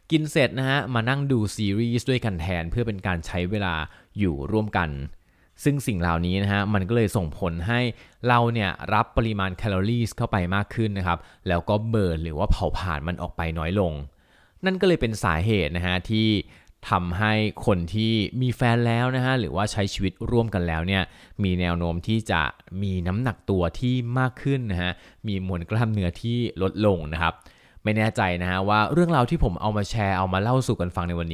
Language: Thai